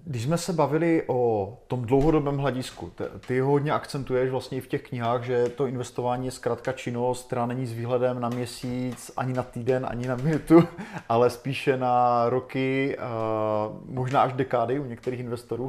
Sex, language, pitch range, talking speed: male, Czech, 115-130 Hz, 170 wpm